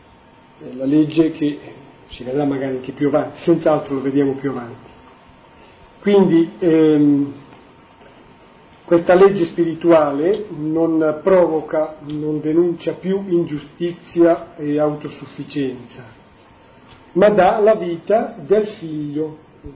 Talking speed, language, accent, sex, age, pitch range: 105 wpm, Italian, native, male, 40-59, 145-185 Hz